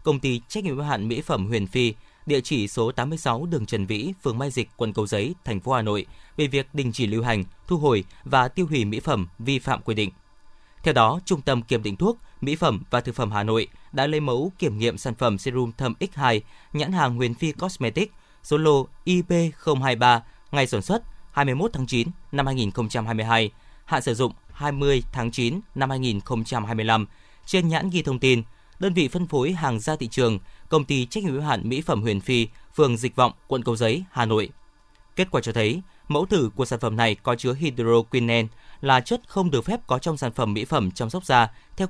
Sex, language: male, Vietnamese